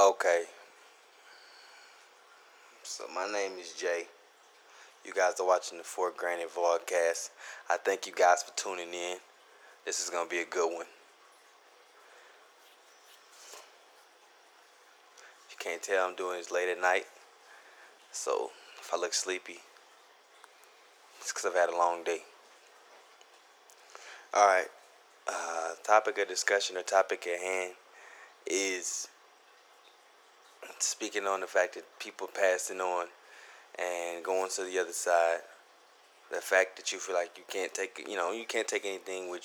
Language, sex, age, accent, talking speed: English, male, 20-39, American, 135 wpm